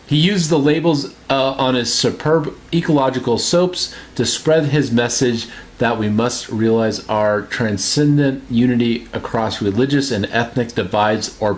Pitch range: 105-135 Hz